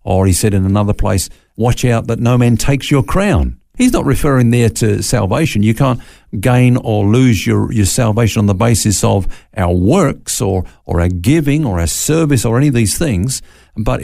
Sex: male